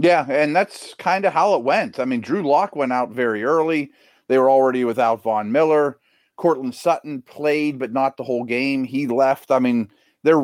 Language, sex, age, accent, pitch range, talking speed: English, male, 40-59, American, 115-150 Hz, 200 wpm